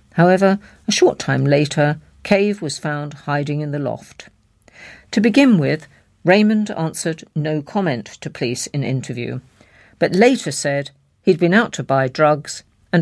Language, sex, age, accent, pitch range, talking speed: English, female, 50-69, British, 140-195 Hz, 150 wpm